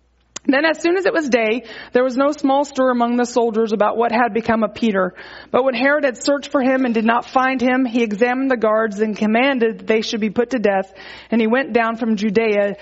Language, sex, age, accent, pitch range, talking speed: English, female, 30-49, American, 235-300 Hz, 245 wpm